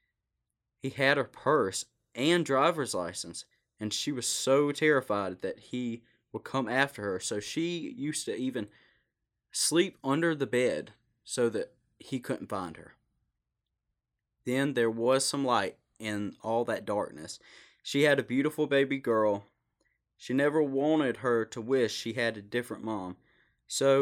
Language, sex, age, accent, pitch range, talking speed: English, male, 20-39, American, 110-140 Hz, 150 wpm